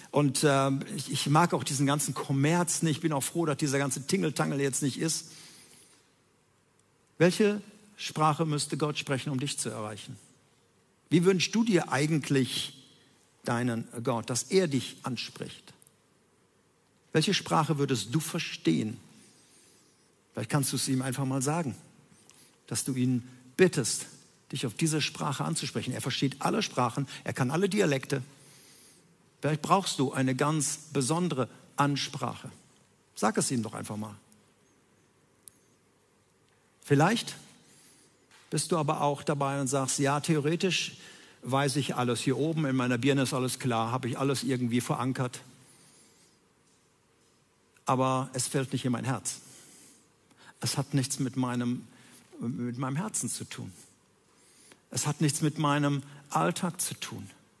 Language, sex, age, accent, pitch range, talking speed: German, male, 50-69, German, 130-155 Hz, 140 wpm